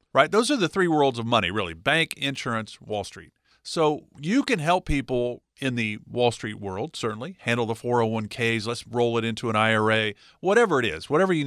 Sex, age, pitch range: male, 50-69, 115-160 Hz